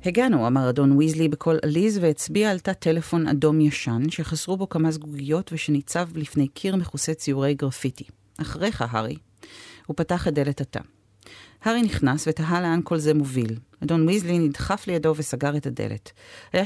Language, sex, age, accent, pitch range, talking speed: Hebrew, female, 40-59, native, 135-170 Hz, 160 wpm